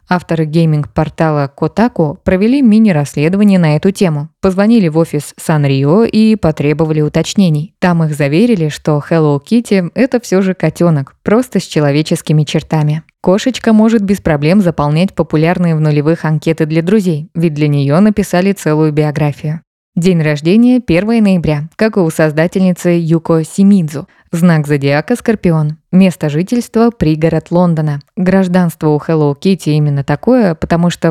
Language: Russian